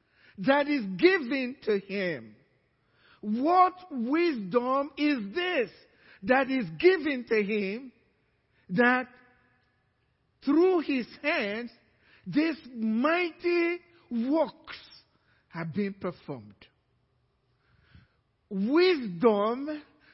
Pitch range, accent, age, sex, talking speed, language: 200-300 Hz, Nigerian, 50-69, male, 75 wpm, English